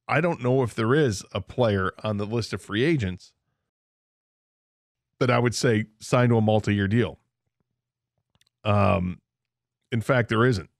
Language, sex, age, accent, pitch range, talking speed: English, male, 40-59, American, 110-135 Hz, 155 wpm